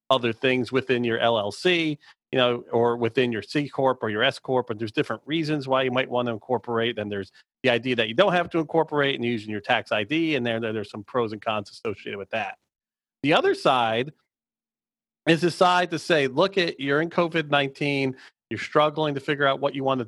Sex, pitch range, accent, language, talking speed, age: male, 120-145 Hz, American, English, 215 wpm, 40-59